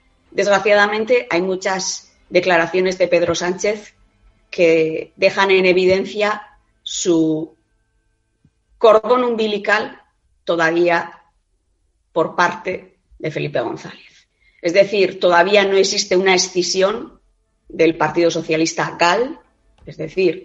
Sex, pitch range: female, 165-200 Hz